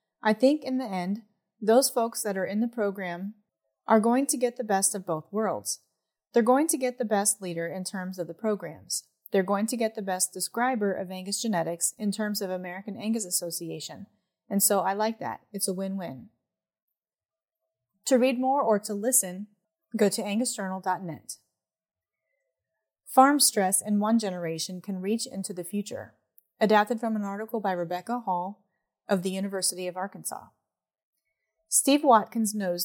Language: English